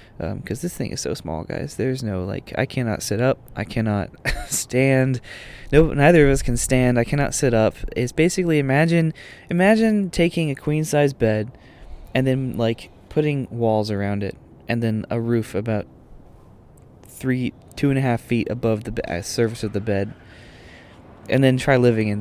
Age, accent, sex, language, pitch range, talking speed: 20-39, American, male, English, 115-160 Hz, 185 wpm